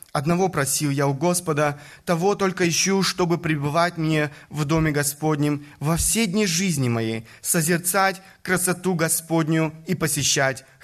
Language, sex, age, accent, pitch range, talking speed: Russian, male, 20-39, native, 150-190 Hz, 135 wpm